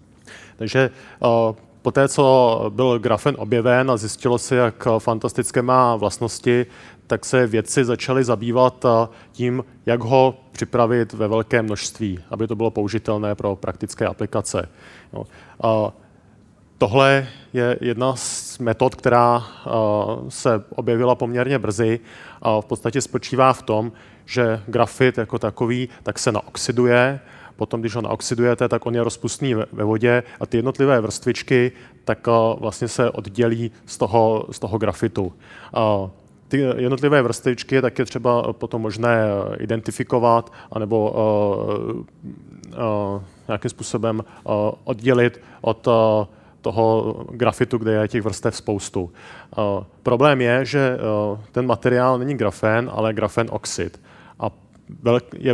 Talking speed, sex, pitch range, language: 125 wpm, male, 110-125 Hz, Czech